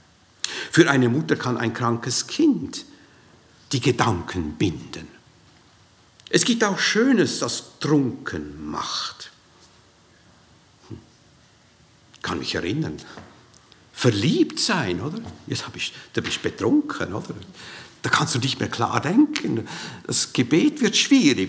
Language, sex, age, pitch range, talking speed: German, male, 60-79, 115-170 Hz, 120 wpm